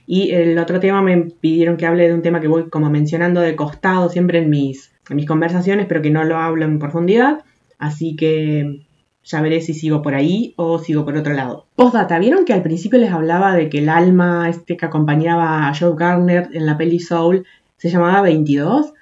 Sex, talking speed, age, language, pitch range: female, 210 wpm, 20-39, Spanish, 160-200 Hz